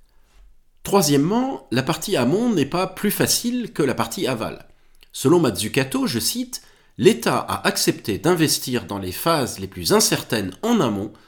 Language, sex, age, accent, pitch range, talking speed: French, male, 40-59, French, 110-170 Hz, 150 wpm